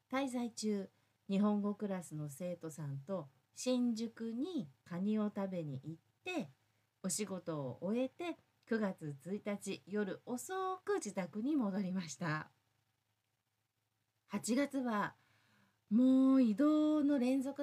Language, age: Japanese, 40-59